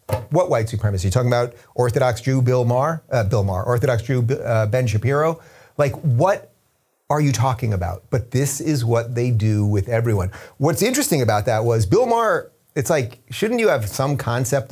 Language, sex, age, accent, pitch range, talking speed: English, male, 30-49, American, 110-140 Hz, 190 wpm